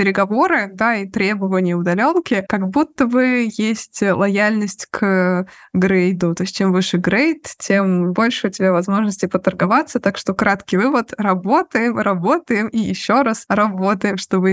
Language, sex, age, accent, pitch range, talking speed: Russian, female, 20-39, native, 185-215 Hz, 145 wpm